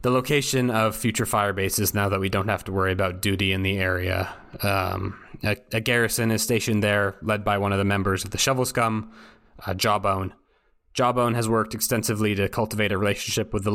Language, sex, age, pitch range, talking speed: English, male, 20-39, 100-115 Hz, 205 wpm